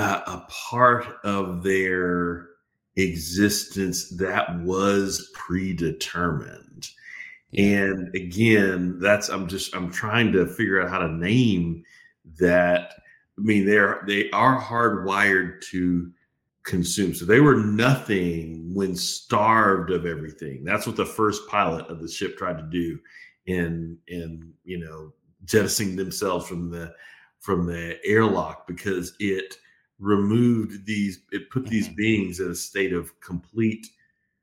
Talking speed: 125 wpm